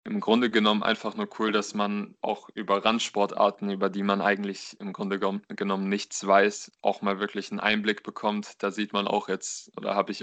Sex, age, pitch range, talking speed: male, 20-39, 100-110 Hz, 200 wpm